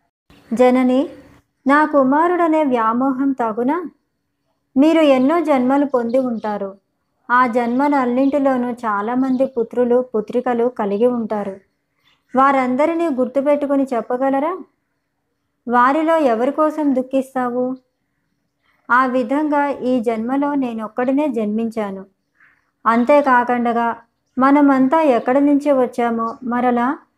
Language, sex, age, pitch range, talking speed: Telugu, male, 20-39, 235-280 Hz, 80 wpm